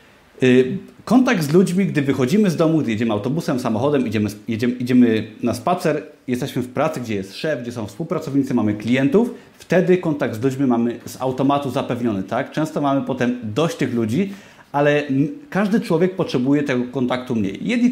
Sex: male